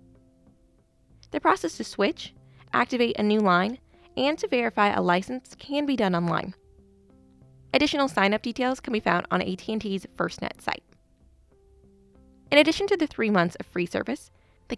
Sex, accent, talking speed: female, American, 150 wpm